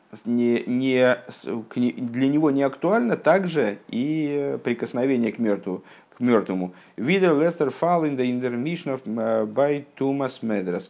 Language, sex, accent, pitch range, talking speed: Russian, male, native, 100-130 Hz, 110 wpm